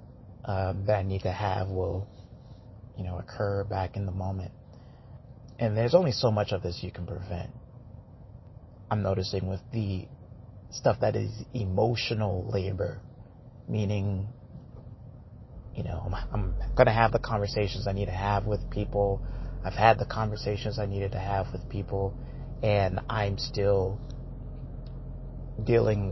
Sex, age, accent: male, 30-49, American